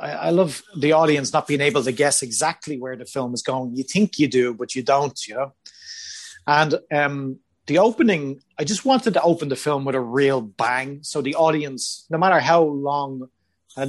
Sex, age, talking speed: male, 30-49, 205 wpm